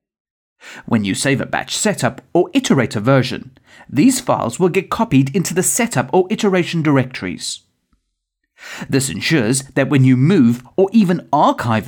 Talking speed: 145 wpm